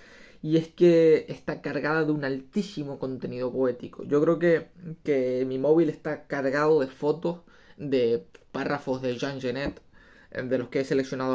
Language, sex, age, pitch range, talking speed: Spanish, male, 20-39, 130-160 Hz, 160 wpm